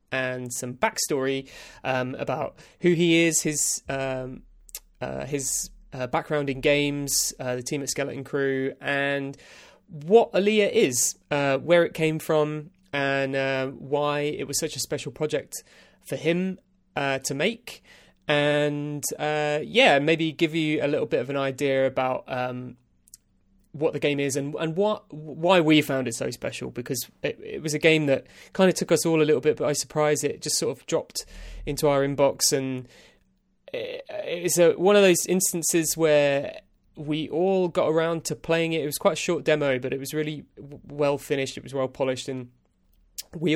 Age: 20-39